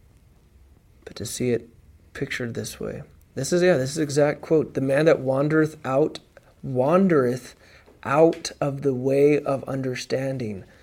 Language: English